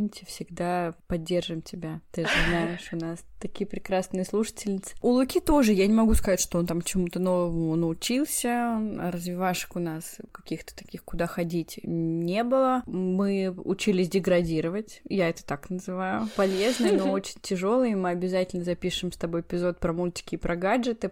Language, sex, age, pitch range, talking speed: Russian, female, 20-39, 175-210 Hz, 155 wpm